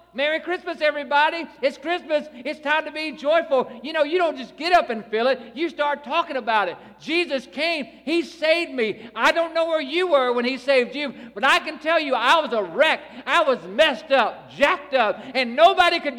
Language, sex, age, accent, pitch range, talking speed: English, male, 50-69, American, 265-335 Hz, 215 wpm